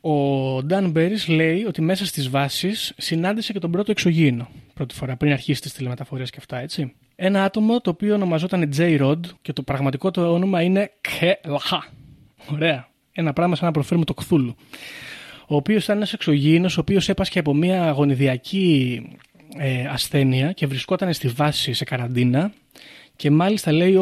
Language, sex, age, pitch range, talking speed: Greek, male, 20-39, 140-180 Hz, 160 wpm